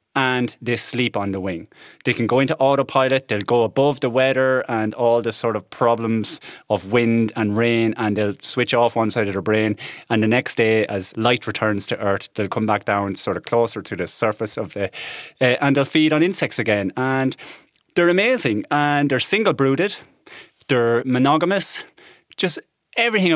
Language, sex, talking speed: English, male, 190 wpm